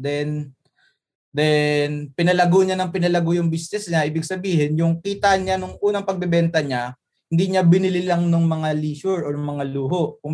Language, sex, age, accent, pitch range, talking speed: English, male, 20-39, Filipino, 145-180 Hz, 170 wpm